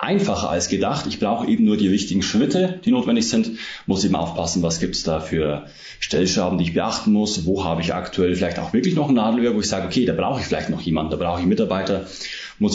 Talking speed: 240 wpm